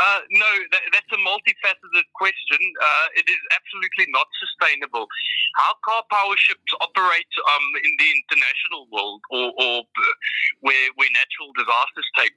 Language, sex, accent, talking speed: English, male, British, 145 wpm